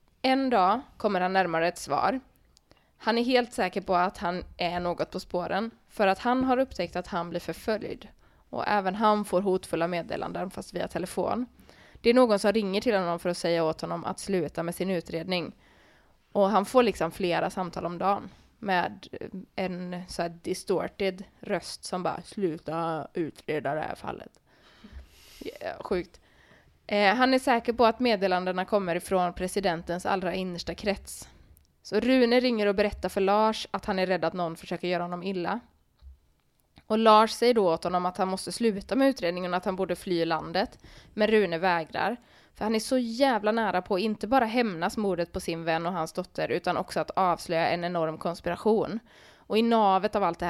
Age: 20-39